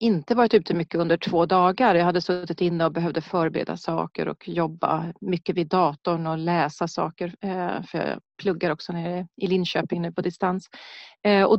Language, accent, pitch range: Swedish, native, 180-210 Hz